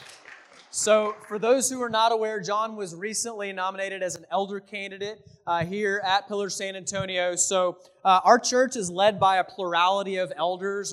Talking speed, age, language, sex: 175 wpm, 20-39, English, male